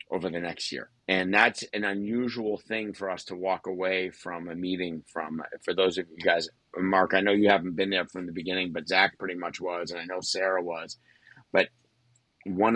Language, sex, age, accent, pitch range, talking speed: English, male, 50-69, American, 85-100 Hz, 210 wpm